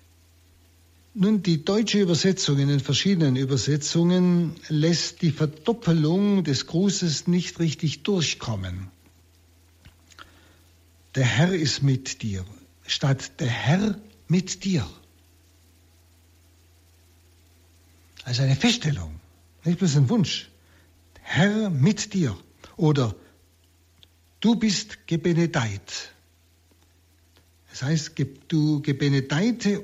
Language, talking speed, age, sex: German, 90 wpm, 60-79, male